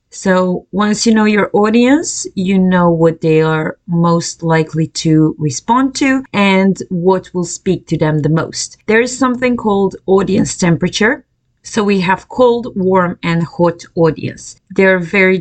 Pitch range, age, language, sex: 165-205 Hz, 30-49, English, female